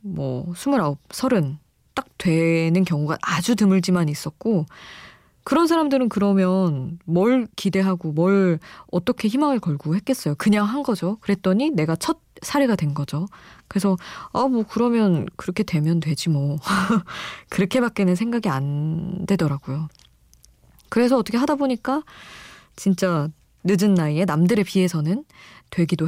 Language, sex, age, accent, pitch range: Korean, female, 20-39, native, 160-230 Hz